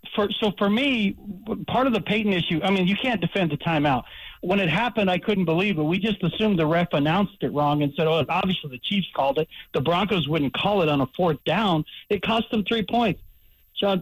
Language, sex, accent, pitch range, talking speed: English, male, American, 165-220 Hz, 230 wpm